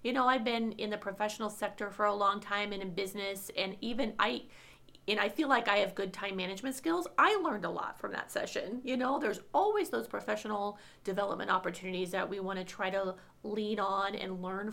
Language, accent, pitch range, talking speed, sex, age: English, American, 185-215 Hz, 210 wpm, female, 30-49